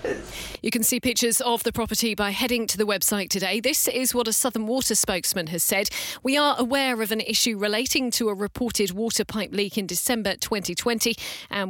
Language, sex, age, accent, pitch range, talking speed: English, female, 40-59, British, 190-235 Hz, 200 wpm